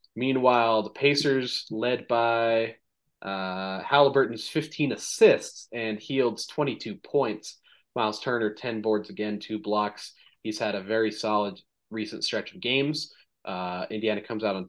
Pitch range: 105-125 Hz